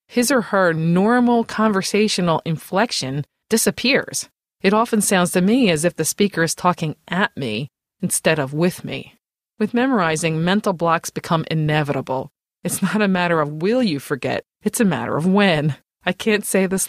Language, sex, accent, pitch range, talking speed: English, female, American, 155-210 Hz, 165 wpm